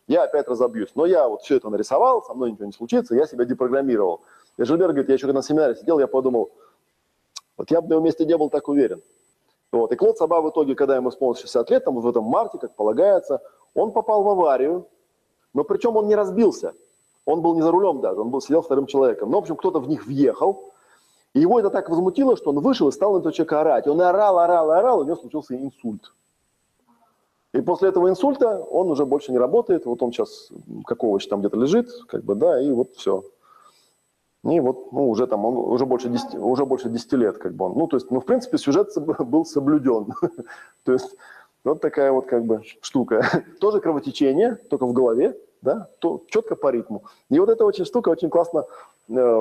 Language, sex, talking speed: Russian, male, 215 wpm